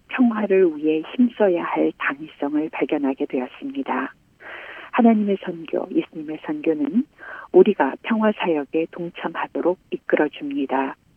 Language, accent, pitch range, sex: Korean, native, 160-230 Hz, female